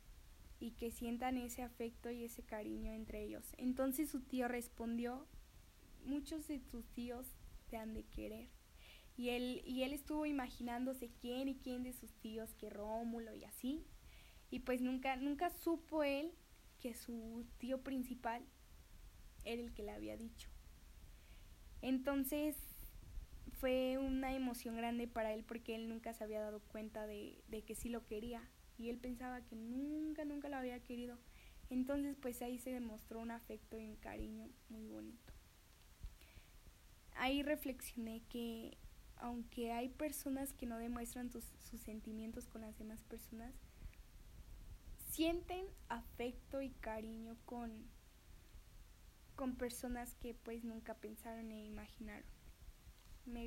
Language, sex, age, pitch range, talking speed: Spanish, female, 10-29, 220-255 Hz, 140 wpm